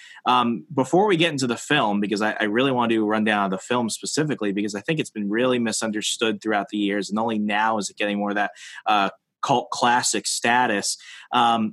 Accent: American